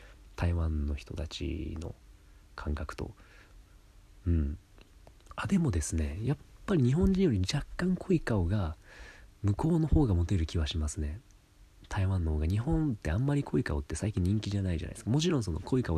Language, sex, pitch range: Japanese, male, 85-125 Hz